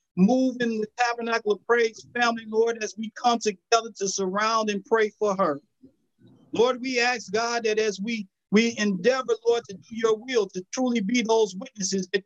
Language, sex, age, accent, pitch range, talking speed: English, male, 50-69, American, 190-235 Hz, 185 wpm